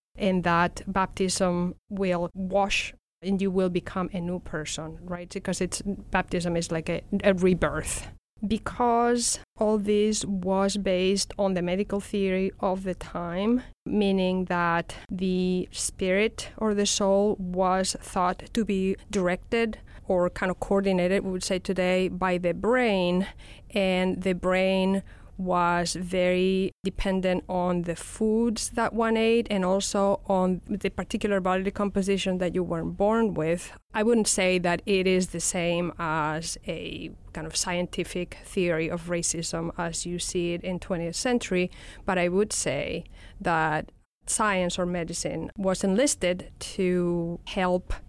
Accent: Spanish